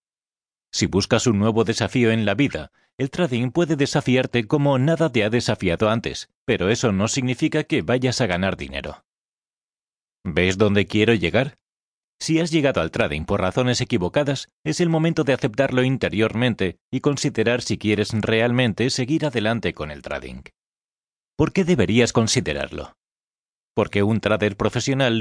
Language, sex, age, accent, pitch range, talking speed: Spanish, male, 30-49, Spanish, 105-140 Hz, 150 wpm